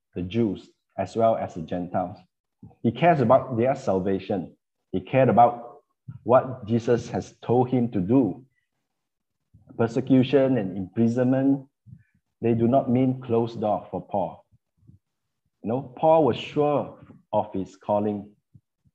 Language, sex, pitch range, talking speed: English, male, 105-130 Hz, 130 wpm